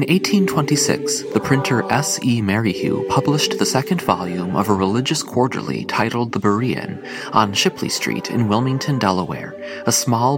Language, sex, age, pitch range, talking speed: English, male, 30-49, 100-140 Hz, 150 wpm